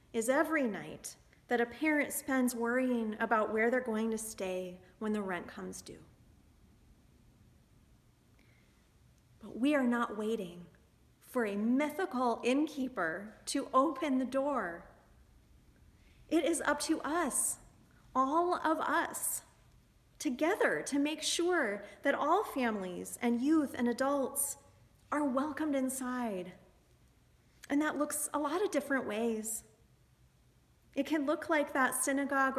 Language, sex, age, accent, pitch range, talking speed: English, female, 30-49, American, 225-290 Hz, 125 wpm